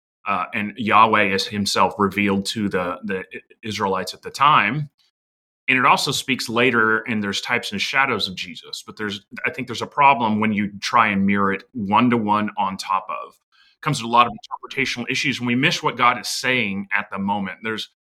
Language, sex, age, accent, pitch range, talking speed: English, male, 30-49, American, 100-125 Hz, 200 wpm